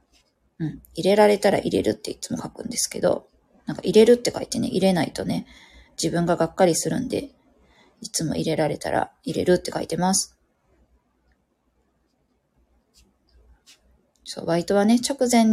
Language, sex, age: Japanese, female, 20-39